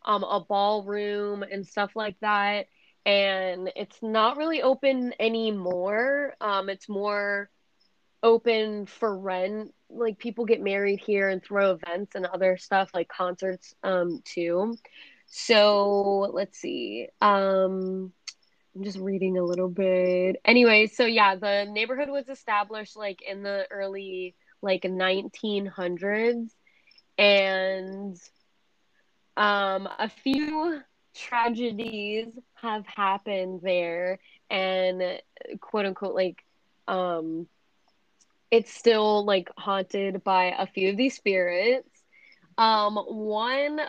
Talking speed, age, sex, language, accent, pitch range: 110 wpm, 20-39, female, English, American, 190-235 Hz